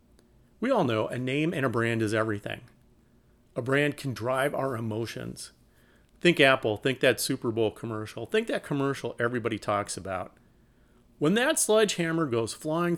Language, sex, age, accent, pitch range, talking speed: English, male, 40-59, American, 110-145 Hz, 155 wpm